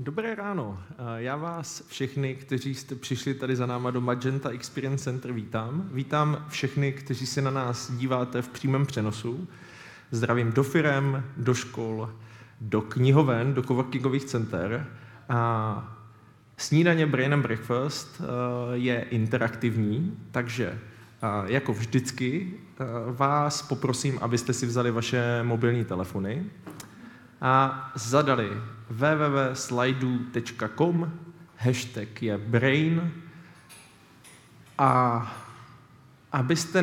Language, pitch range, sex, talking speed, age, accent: Czech, 115-135 Hz, male, 100 wpm, 20-39, native